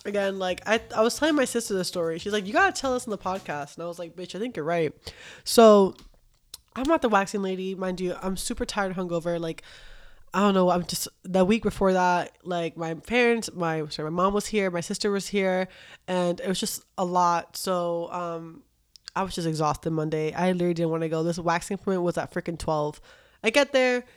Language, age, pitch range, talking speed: English, 20-39, 165-205 Hz, 230 wpm